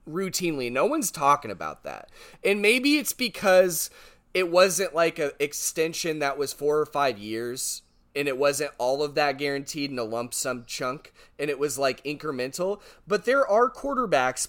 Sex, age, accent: male, 30-49, American